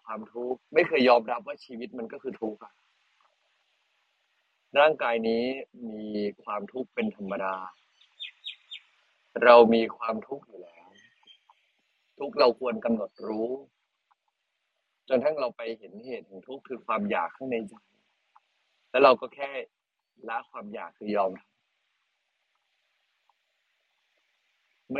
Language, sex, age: Thai, male, 20-39